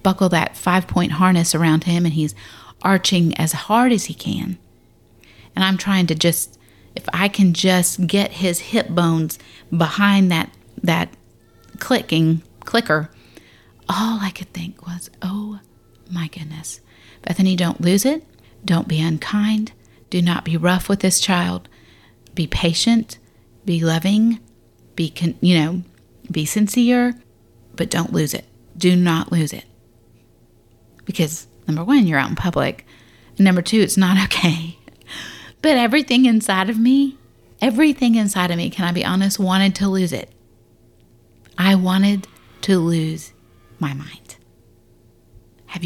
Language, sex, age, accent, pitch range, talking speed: English, female, 40-59, American, 165-200 Hz, 145 wpm